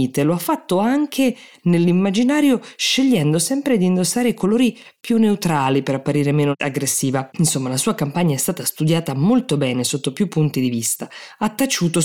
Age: 20-39